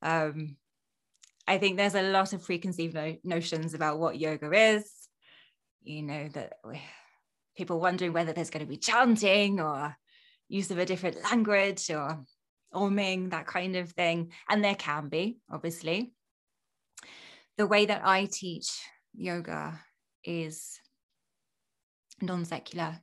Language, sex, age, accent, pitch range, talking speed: English, female, 20-39, British, 165-200 Hz, 130 wpm